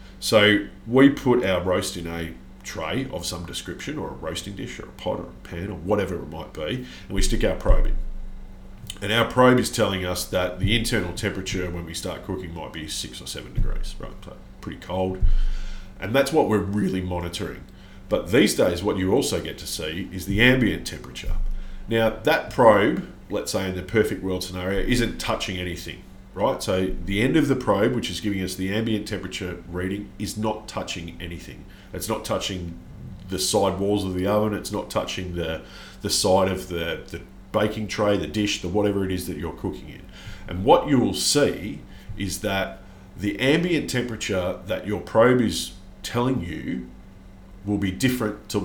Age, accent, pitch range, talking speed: 40-59, Australian, 90-105 Hz, 190 wpm